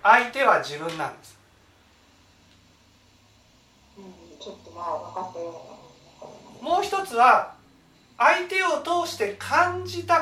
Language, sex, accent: Japanese, male, native